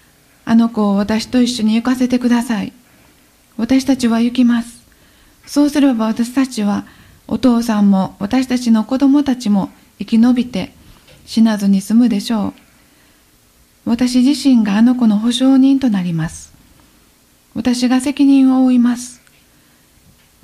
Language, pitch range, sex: Japanese, 215-260 Hz, female